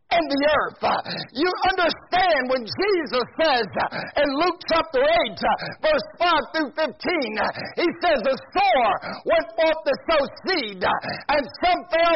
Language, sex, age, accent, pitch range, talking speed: English, male, 50-69, American, 245-330 Hz, 140 wpm